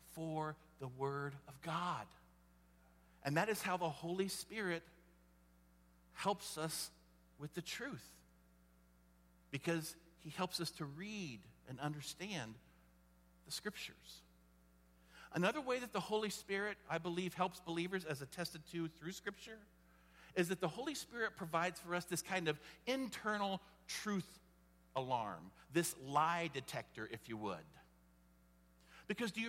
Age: 50-69